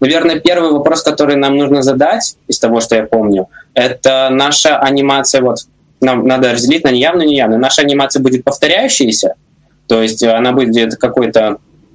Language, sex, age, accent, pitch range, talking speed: Russian, male, 20-39, native, 115-140 Hz, 160 wpm